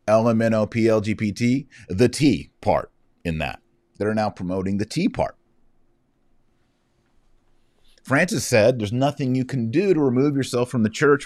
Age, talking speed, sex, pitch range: 40-59, 135 wpm, male, 85-120 Hz